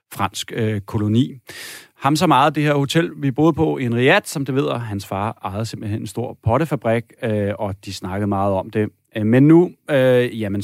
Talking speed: 195 wpm